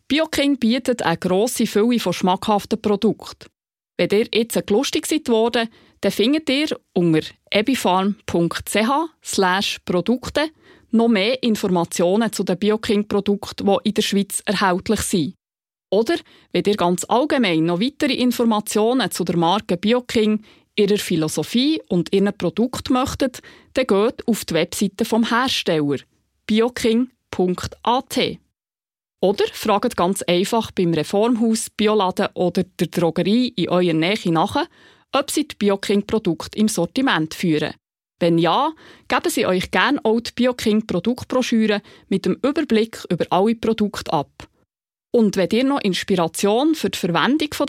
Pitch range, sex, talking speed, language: 185-240 Hz, female, 130 wpm, German